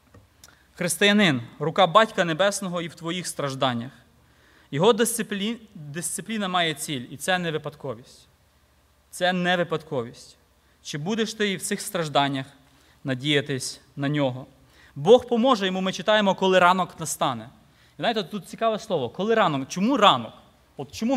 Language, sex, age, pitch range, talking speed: Ukrainian, male, 20-39, 140-210 Hz, 135 wpm